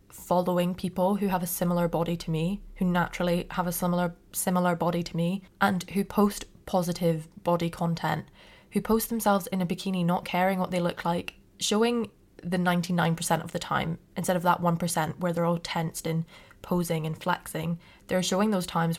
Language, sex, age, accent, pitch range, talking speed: English, female, 20-39, British, 170-190 Hz, 185 wpm